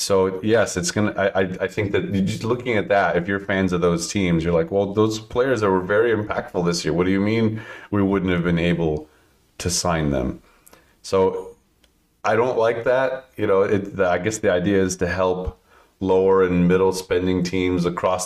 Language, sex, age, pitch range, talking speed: English, male, 30-49, 90-105 Hz, 205 wpm